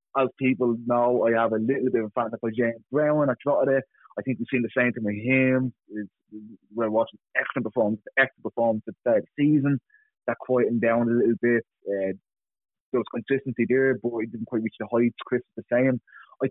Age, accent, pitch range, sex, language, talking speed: 20-39, British, 115-135 Hz, male, English, 215 wpm